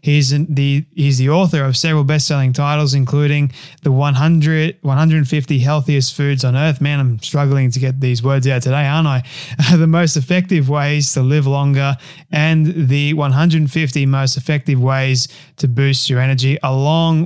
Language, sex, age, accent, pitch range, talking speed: English, male, 20-39, Australian, 130-145 Hz, 160 wpm